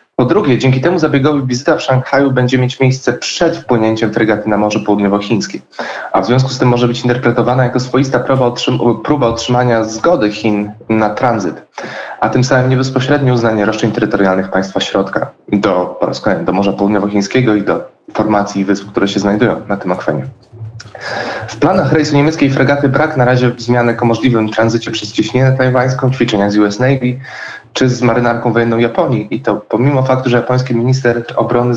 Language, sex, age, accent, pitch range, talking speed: Polish, male, 20-39, native, 110-130 Hz, 175 wpm